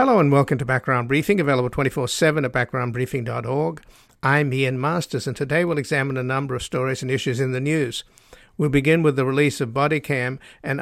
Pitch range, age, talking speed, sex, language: 130-145 Hz, 60-79, 195 wpm, male, English